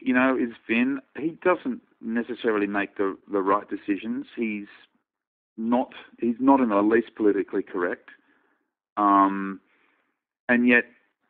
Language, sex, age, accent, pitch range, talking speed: English, male, 40-59, Australian, 95-135 Hz, 125 wpm